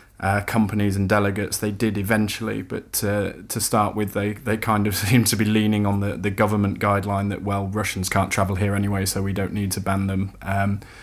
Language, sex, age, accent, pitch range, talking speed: English, male, 20-39, British, 100-105 Hz, 220 wpm